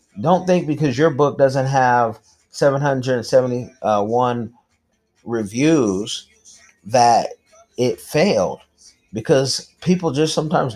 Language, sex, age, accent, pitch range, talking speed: English, male, 30-49, American, 95-130 Hz, 90 wpm